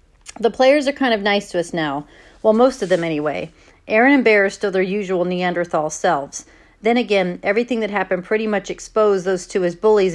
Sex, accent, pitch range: female, American, 180-225 Hz